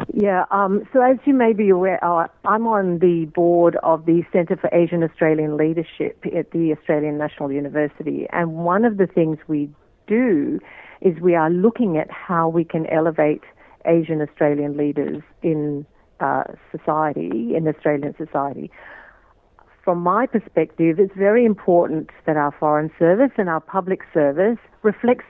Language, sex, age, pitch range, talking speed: Hindi, female, 50-69, 155-195 Hz, 155 wpm